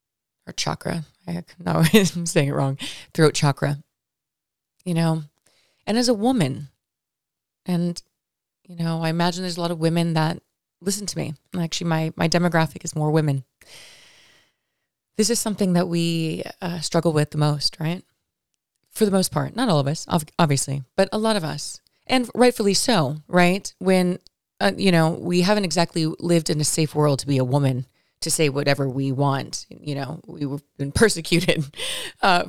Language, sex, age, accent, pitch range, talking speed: English, female, 30-49, American, 150-195 Hz, 170 wpm